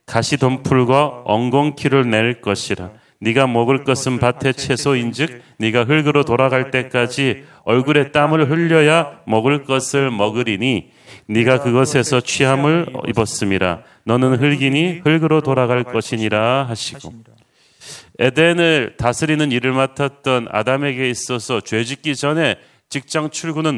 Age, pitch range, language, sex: 40-59, 120-150 Hz, Korean, male